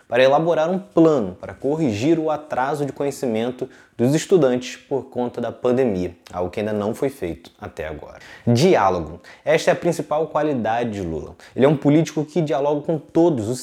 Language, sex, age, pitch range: Portuguese, male, 20-39, 115-155 Hz